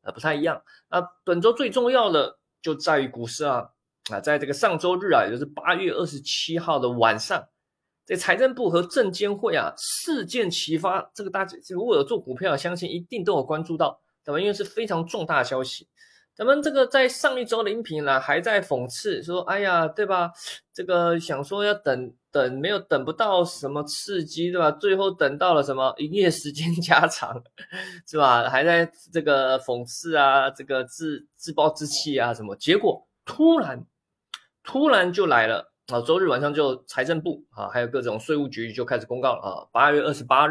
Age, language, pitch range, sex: 20-39, Chinese, 135-195 Hz, male